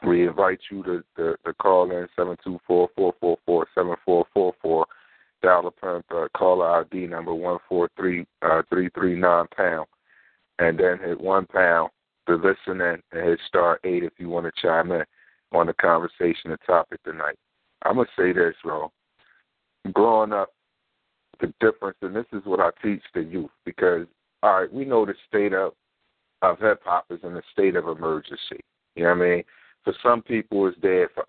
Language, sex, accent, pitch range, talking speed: English, male, American, 90-110 Hz, 165 wpm